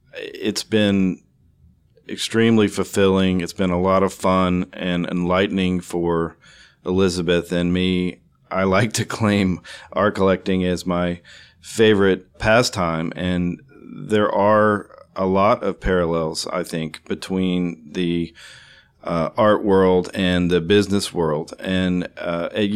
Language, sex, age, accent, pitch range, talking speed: English, male, 40-59, American, 90-100 Hz, 125 wpm